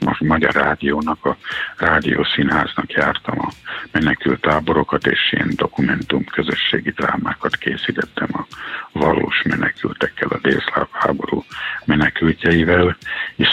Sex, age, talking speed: male, 60-79, 100 wpm